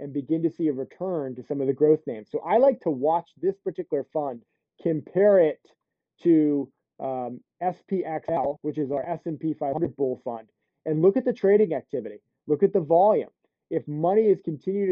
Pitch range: 140-180 Hz